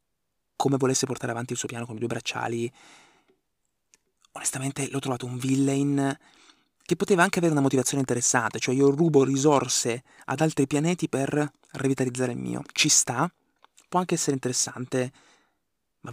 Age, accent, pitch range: 20-39, native, 125-145 Hz